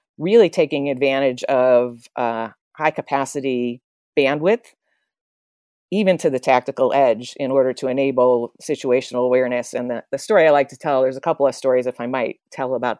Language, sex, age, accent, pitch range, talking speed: English, female, 40-59, American, 130-160 Hz, 165 wpm